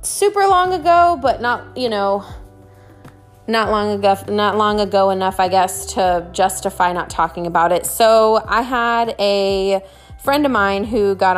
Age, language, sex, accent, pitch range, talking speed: 20-39, English, female, American, 185-230 Hz, 165 wpm